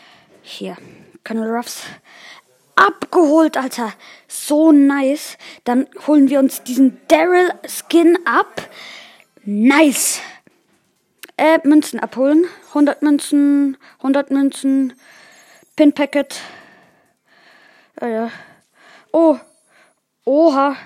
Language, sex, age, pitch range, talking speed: German, female, 20-39, 270-330 Hz, 85 wpm